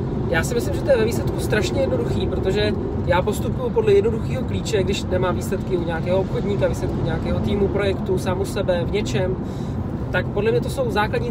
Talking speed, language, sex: 195 wpm, Czech, male